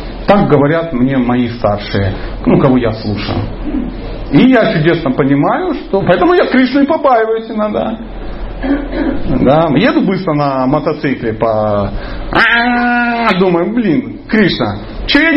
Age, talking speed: 30-49, 115 wpm